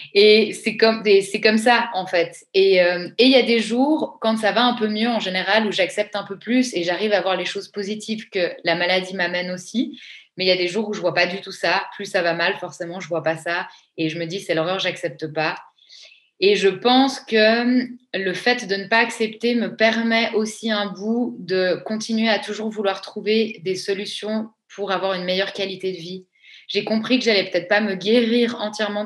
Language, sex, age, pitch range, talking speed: French, female, 20-39, 185-225 Hz, 235 wpm